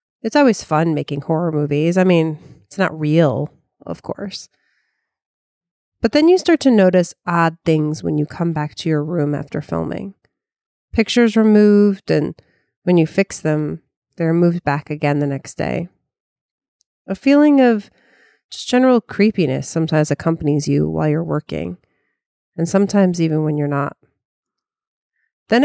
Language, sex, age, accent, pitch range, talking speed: English, female, 30-49, American, 150-205 Hz, 145 wpm